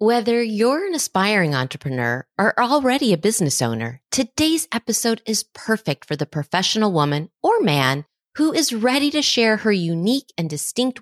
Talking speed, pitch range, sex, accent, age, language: 160 wpm, 160-255 Hz, female, American, 30-49, English